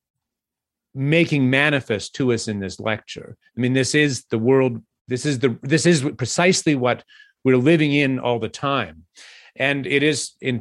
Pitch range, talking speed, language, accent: 120-155 Hz, 170 wpm, English, American